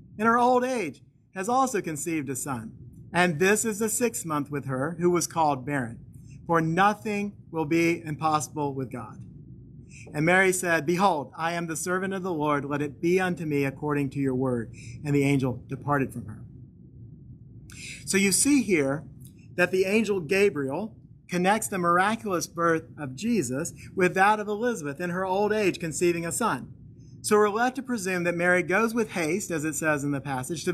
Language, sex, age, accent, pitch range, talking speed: English, male, 40-59, American, 135-190 Hz, 185 wpm